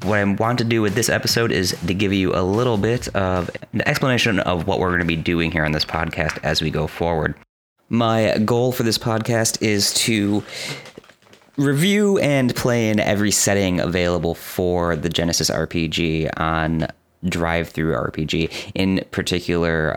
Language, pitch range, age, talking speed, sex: English, 85-105 Hz, 30-49, 165 wpm, male